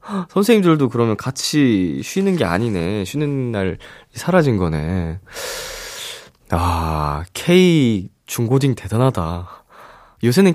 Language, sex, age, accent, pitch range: Korean, male, 20-39, native, 95-145 Hz